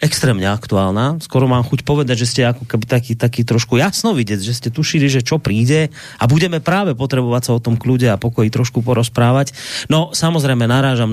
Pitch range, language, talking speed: 105-125 Hz, Slovak, 195 wpm